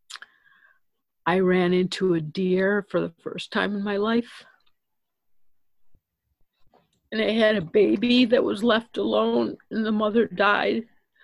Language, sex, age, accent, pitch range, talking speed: English, female, 50-69, American, 170-210 Hz, 135 wpm